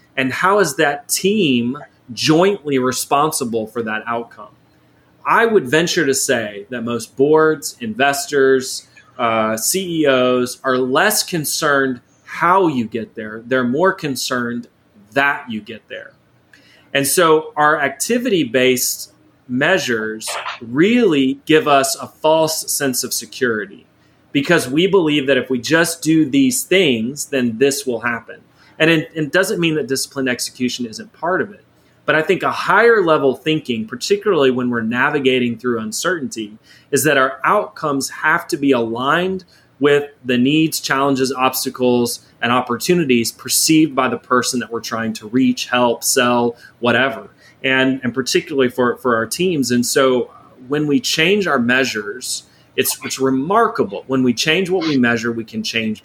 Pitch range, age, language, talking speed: 120-155 Hz, 30-49, English, 150 wpm